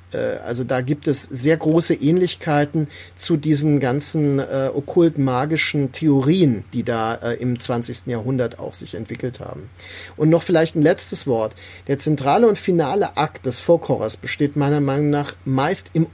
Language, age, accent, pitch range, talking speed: German, 40-59, German, 130-170 Hz, 155 wpm